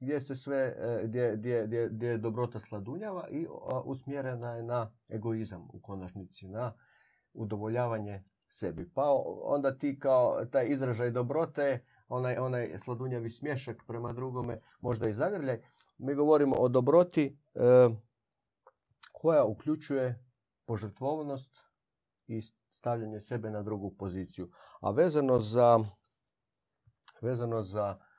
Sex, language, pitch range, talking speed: male, Croatian, 105-125 Hz, 115 wpm